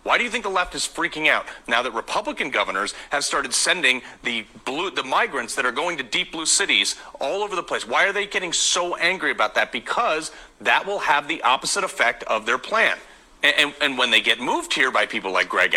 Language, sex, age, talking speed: English, male, 40-59, 230 wpm